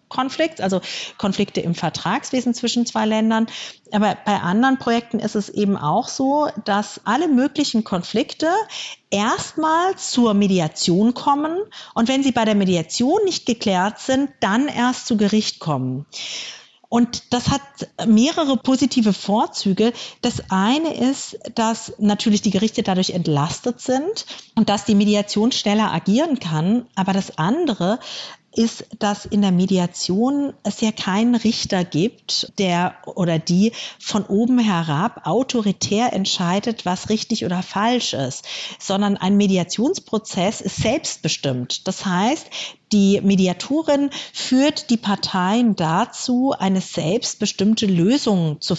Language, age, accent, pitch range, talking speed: German, 50-69, German, 190-245 Hz, 130 wpm